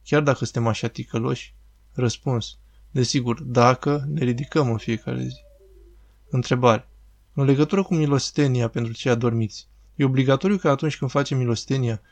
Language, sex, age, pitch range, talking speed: Romanian, male, 20-39, 115-140 Hz, 140 wpm